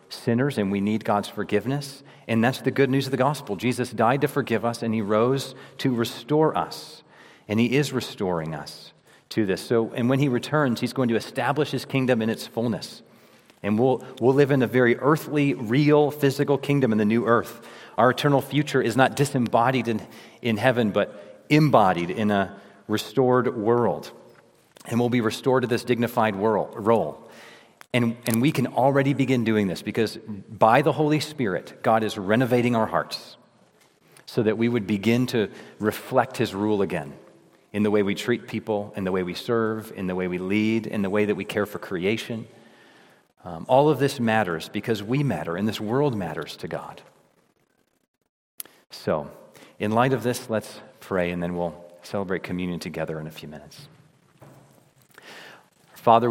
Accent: American